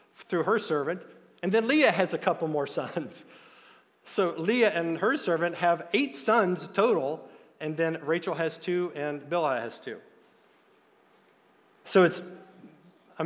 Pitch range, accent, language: 160-195 Hz, American, English